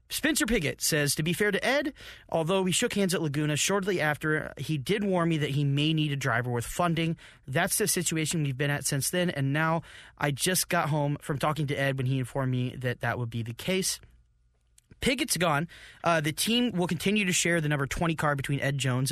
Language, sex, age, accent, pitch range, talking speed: English, male, 30-49, American, 130-170 Hz, 225 wpm